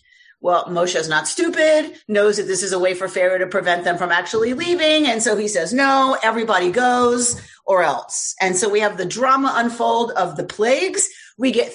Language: English